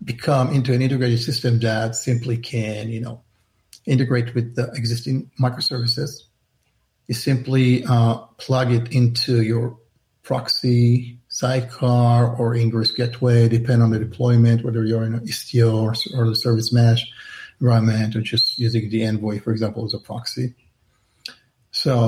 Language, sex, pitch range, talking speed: English, male, 115-125 Hz, 140 wpm